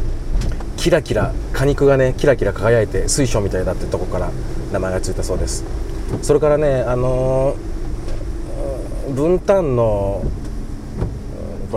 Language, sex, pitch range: Japanese, male, 95-135 Hz